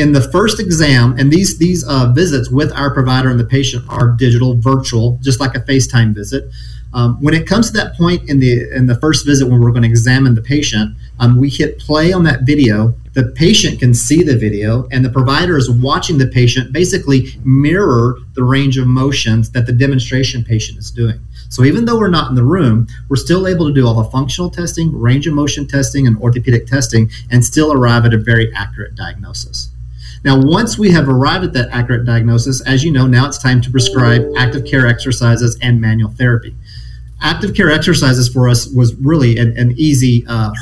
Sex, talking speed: male, 205 wpm